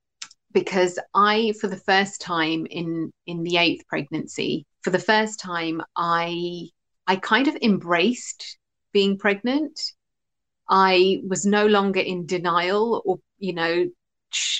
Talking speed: 130 wpm